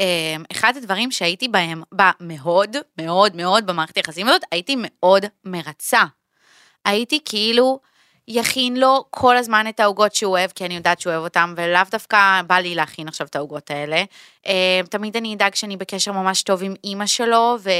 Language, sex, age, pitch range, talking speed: Hebrew, female, 20-39, 180-225 Hz, 170 wpm